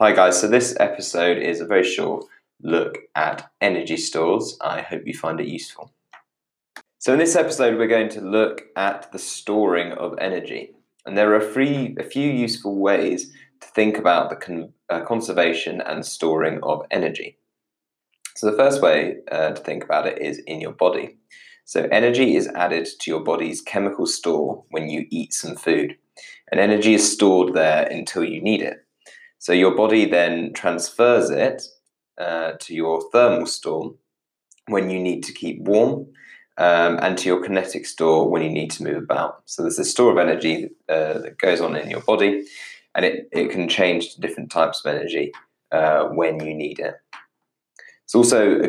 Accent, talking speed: British, 175 wpm